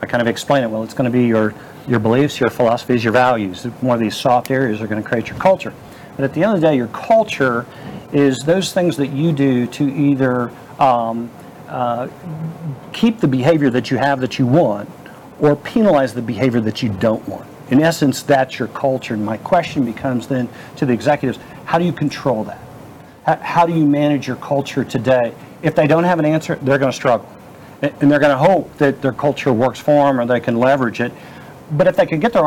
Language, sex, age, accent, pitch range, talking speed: English, male, 50-69, American, 130-160 Hz, 220 wpm